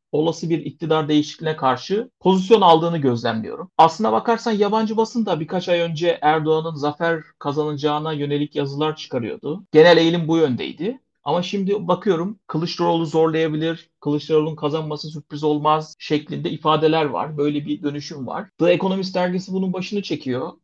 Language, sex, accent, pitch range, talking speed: Turkish, male, native, 145-180 Hz, 140 wpm